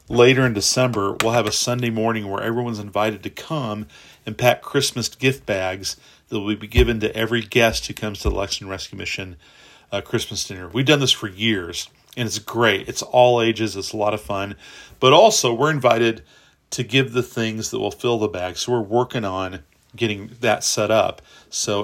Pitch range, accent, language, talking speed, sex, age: 100-125 Hz, American, English, 200 wpm, male, 40-59